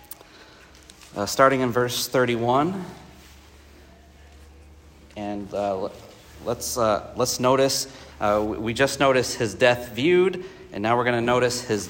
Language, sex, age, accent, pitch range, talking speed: English, male, 40-59, American, 110-130 Hz, 125 wpm